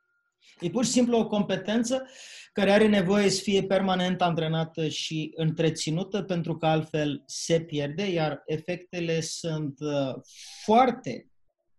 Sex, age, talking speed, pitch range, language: male, 30-49, 120 wpm, 155-210 Hz, Romanian